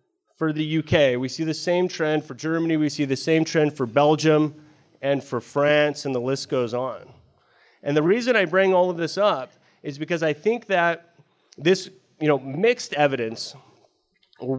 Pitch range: 140-175 Hz